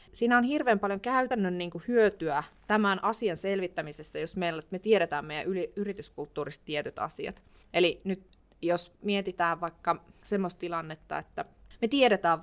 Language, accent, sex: Finnish, native, female